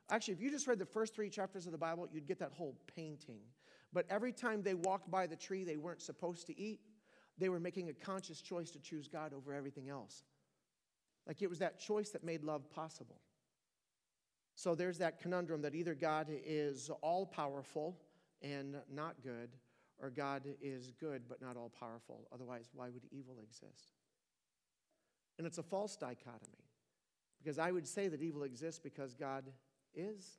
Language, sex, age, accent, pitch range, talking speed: English, male, 50-69, American, 140-185 Hz, 180 wpm